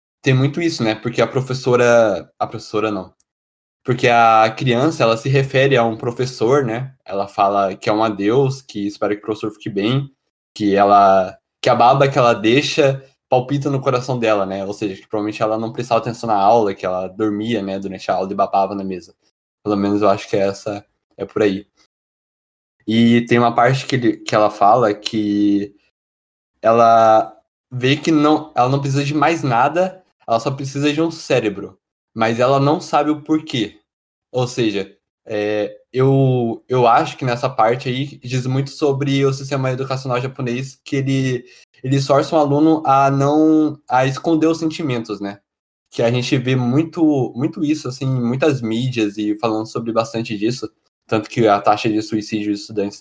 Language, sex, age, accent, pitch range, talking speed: Portuguese, male, 20-39, Brazilian, 105-135 Hz, 180 wpm